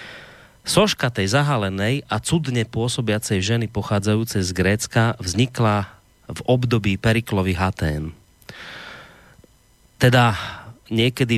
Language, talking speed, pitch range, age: Slovak, 90 wpm, 100-125 Hz, 30-49